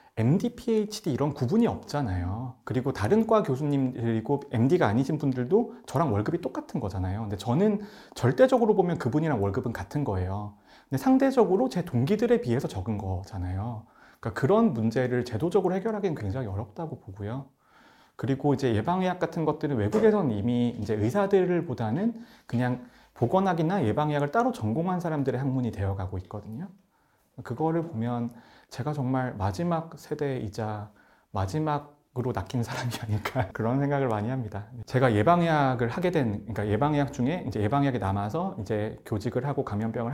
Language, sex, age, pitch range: Korean, male, 30-49, 110-155 Hz